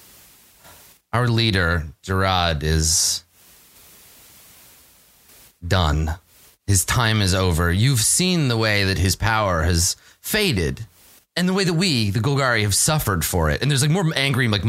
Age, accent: 30-49, American